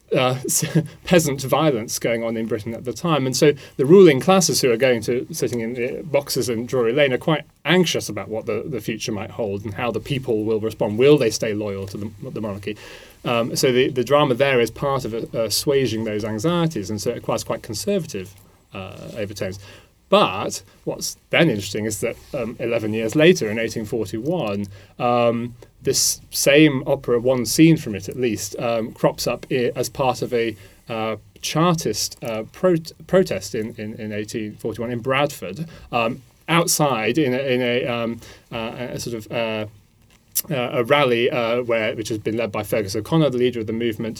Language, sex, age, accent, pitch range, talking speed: English, male, 30-49, British, 105-130 Hz, 185 wpm